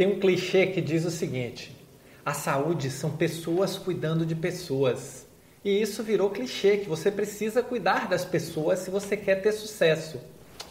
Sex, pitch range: male, 145-200 Hz